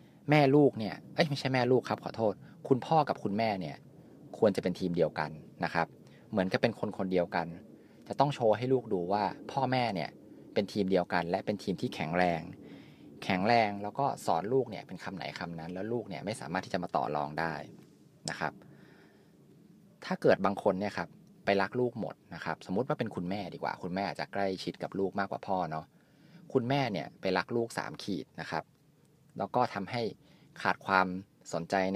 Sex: male